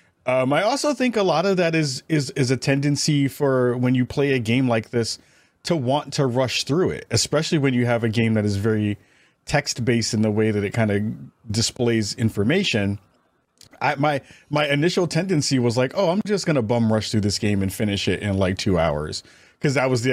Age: 30-49